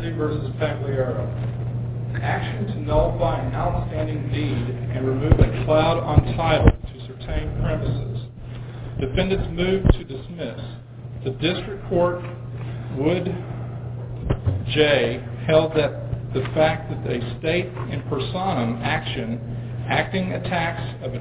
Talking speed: 115 wpm